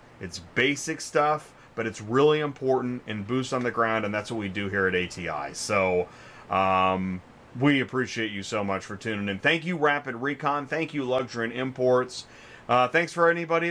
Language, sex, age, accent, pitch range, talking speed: English, male, 30-49, American, 105-150 Hz, 190 wpm